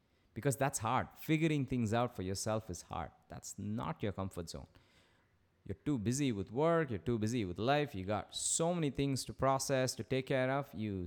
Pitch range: 90-120 Hz